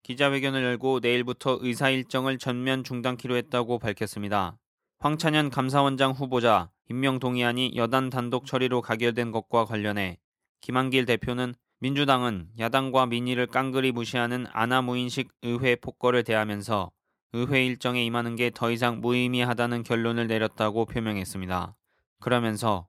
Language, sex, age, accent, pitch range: Korean, male, 20-39, native, 110-130 Hz